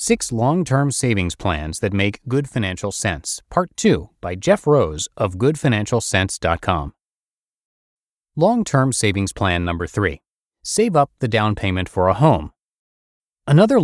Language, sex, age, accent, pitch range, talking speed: English, male, 30-49, American, 95-130 Hz, 130 wpm